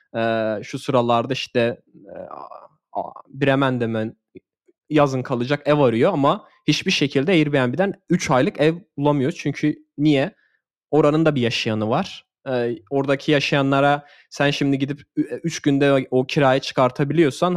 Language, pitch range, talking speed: Turkish, 130-165 Hz, 135 wpm